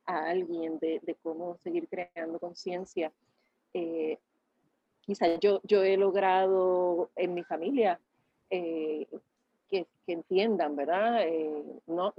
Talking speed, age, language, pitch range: 110 wpm, 40-59, English, 165-200 Hz